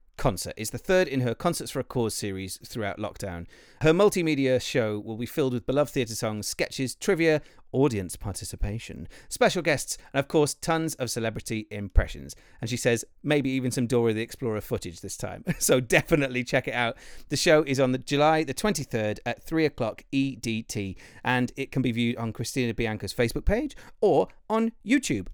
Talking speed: 185 wpm